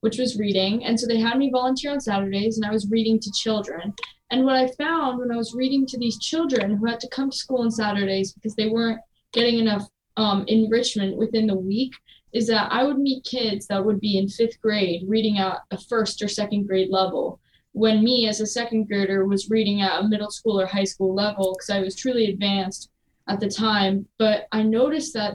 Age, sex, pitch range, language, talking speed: 10-29, female, 195-225 Hz, English, 225 wpm